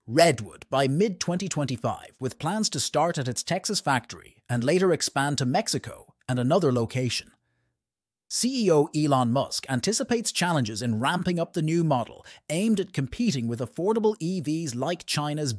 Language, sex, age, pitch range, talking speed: English, male, 30-49, 125-175 Hz, 145 wpm